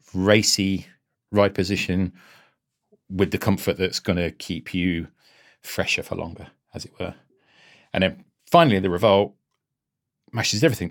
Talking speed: 130 wpm